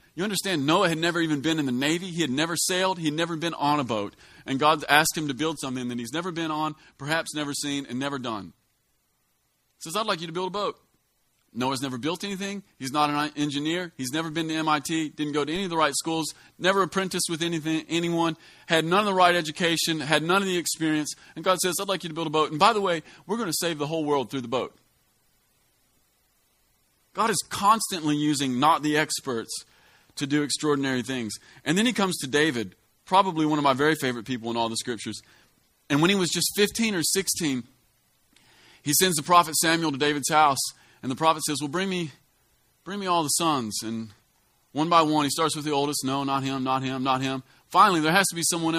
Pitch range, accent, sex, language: 135-170 Hz, American, male, English